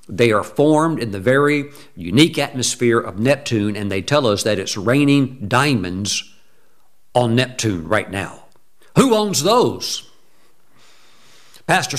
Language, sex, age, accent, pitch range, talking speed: English, male, 60-79, American, 110-145 Hz, 130 wpm